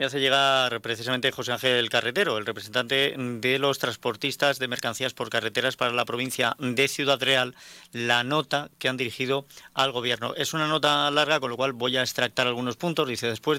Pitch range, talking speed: 115-140 Hz, 190 wpm